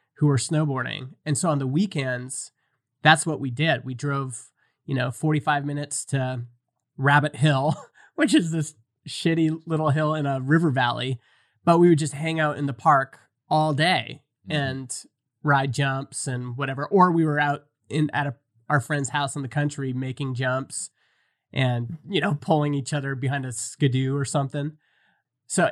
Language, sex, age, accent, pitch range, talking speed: English, male, 30-49, American, 130-160 Hz, 175 wpm